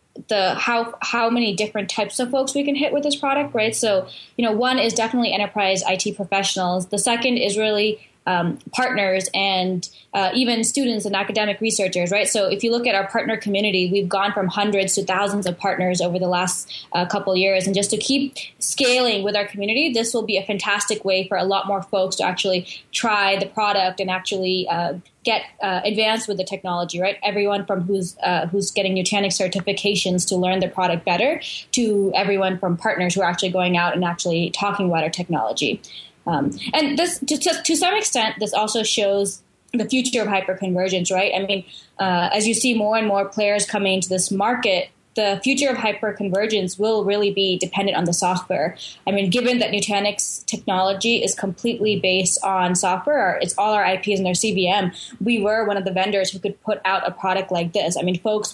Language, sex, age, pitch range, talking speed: English, female, 10-29, 185-215 Hz, 205 wpm